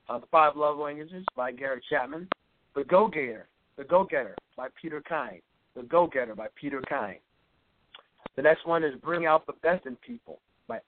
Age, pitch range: 50-69, 130-160 Hz